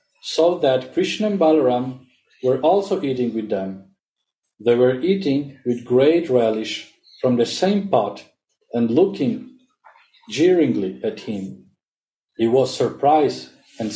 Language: English